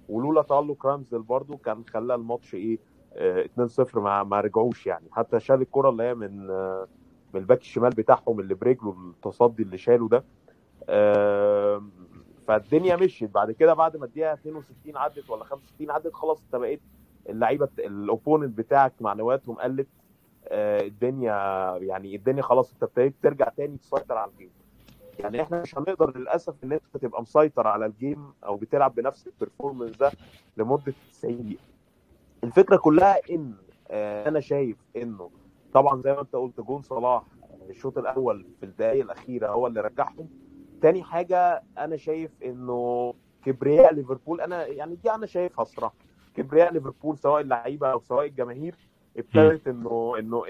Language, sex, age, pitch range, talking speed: Arabic, male, 30-49, 110-155 Hz, 150 wpm